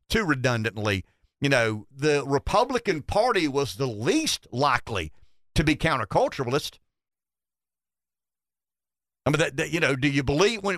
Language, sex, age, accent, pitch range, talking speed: English, male, 50-69, American, 125-170 Hz, 135 wpm